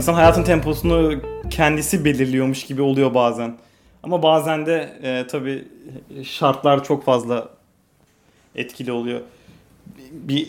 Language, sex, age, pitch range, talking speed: Turkish, male, 30-49, 125-155 Hz, 110 wpm